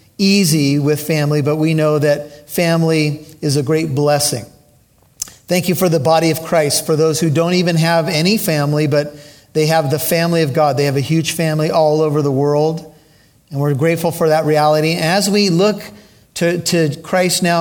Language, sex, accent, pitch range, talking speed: English, male, American, 150-180 Hz, 190 wpm